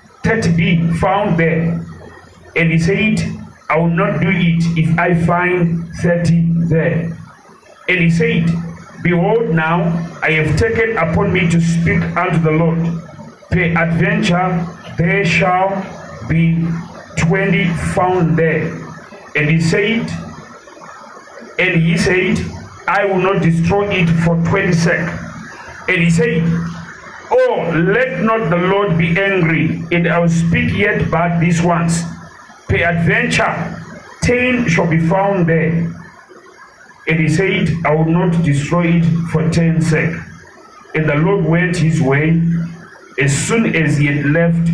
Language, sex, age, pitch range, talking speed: English, male, 40-59, 160-180 Hz, 135 wpm